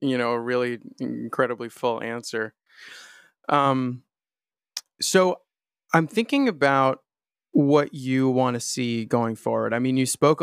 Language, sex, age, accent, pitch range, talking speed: English, male, 30-49, American, 125-145 Hz, 130 wpm